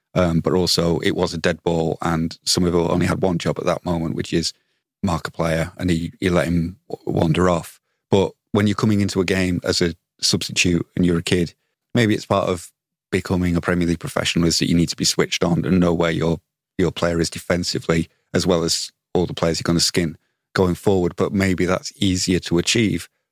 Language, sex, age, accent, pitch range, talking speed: English, male, 30-49, British, 85-95 Hz, 225 wpm